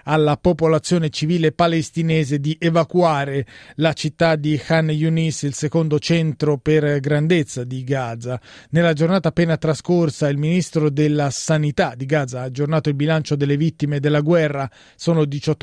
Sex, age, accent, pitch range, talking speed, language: male, 30-49, native, 145-165 Hz, 140 wpm, Italian